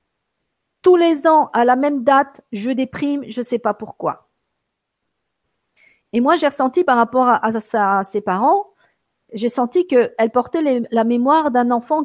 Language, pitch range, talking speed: French, 220-275 Hz, 170 wpm